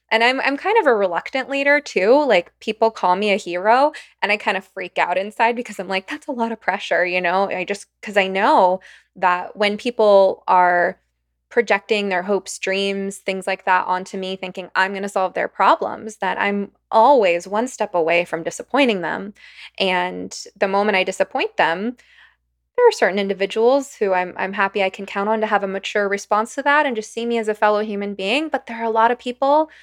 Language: English